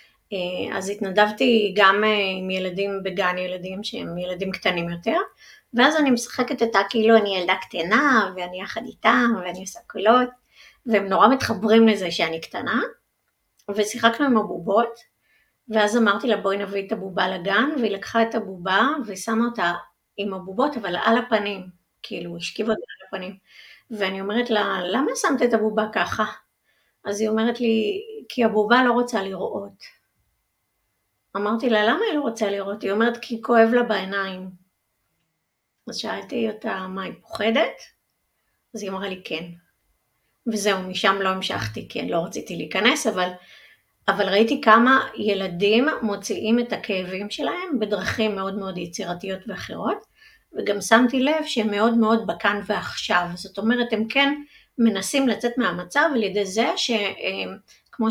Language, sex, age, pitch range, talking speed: Hebrew, female, 30-49, 190-230 Hz, 145 wpm